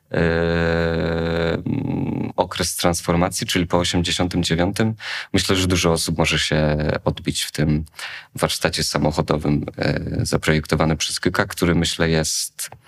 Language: Polish